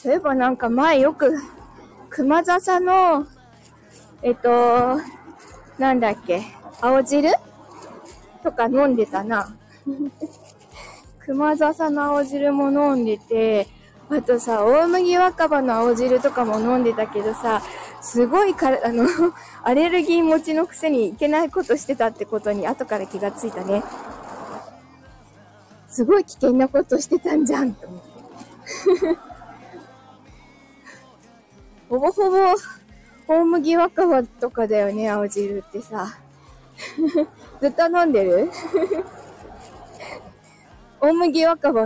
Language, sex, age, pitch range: Japanese, female, 20-39, 240-340 Hz